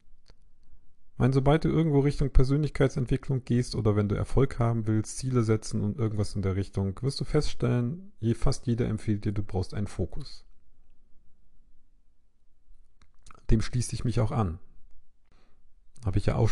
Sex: male